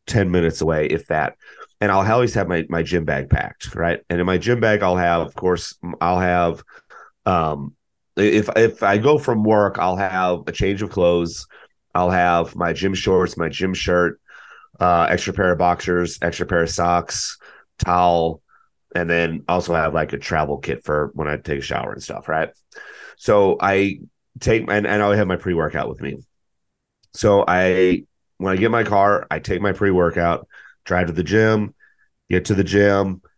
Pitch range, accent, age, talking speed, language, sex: 85-105 Hz, American, 30-49, 190 wpm, English, male